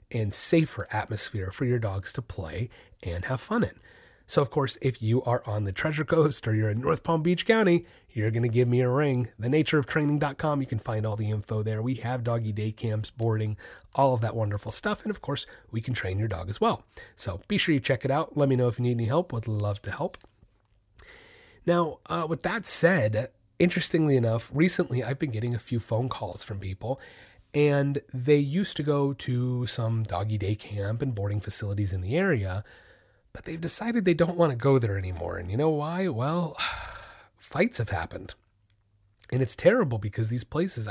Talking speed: 205 wpm